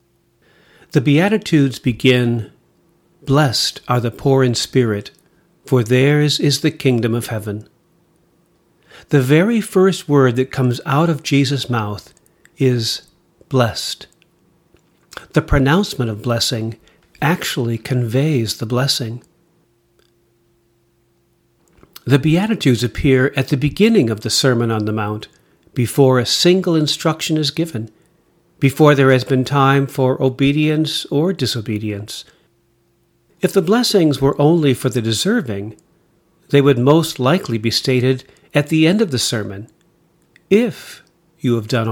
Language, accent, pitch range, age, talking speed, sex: English, American, 115-160 Hz, 50-69, 125 wpm, male